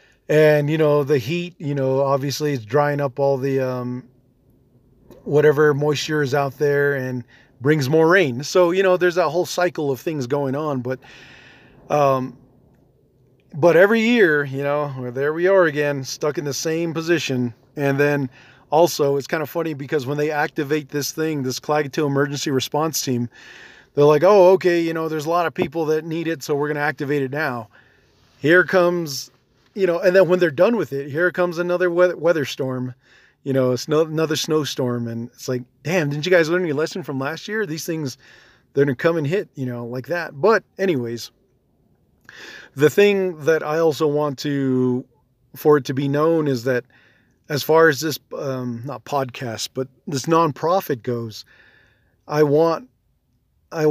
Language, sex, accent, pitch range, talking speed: English, male, American, 135-165 Hz, 185 wpm